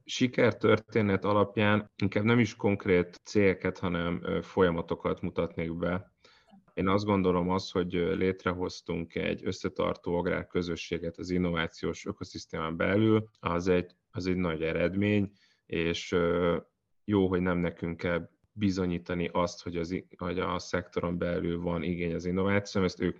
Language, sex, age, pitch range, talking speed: Hungarian, male, 30-49, 85-100 Hz, 130 wpm